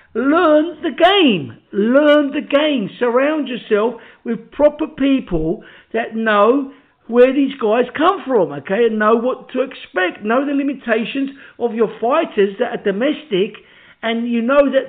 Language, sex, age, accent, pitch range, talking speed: English, male, 50-69, British, 205-275 Hz, 150 wpm